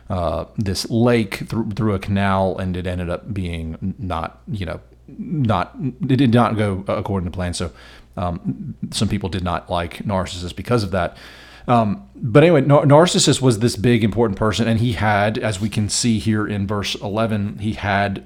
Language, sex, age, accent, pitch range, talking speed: English, male, 40-59, American, 95-115 Hz, 185 wpm